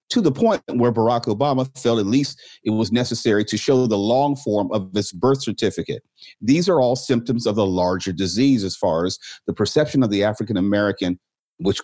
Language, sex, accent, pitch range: English, male, American, 105-135 Hz